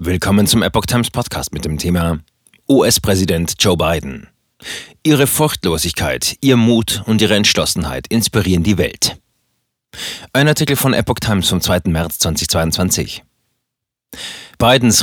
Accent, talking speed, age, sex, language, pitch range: German, 125 wpm, 40-59, male, German, 85-110 Hz